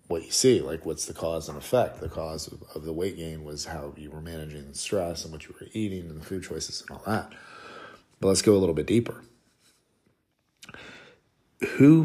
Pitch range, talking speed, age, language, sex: 85-110 Hz, 215 wpm, 40-59, English, male